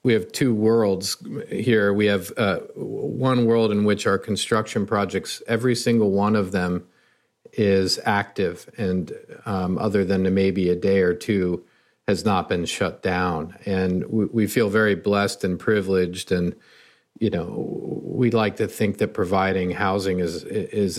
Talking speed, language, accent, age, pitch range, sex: 160 wpm, English, American, 40-59, 95-110 Hz, male